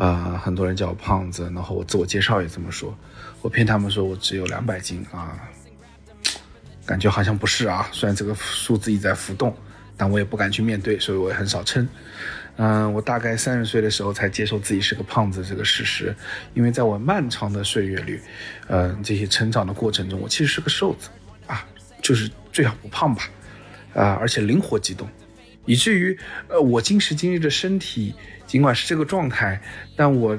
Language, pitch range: Chinese, 100-120 Hz